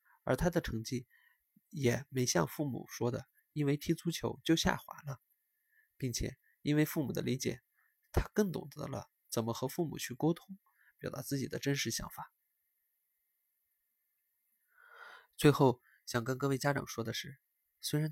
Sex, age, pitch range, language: male, 20-39, 130-175 Hz, Chinese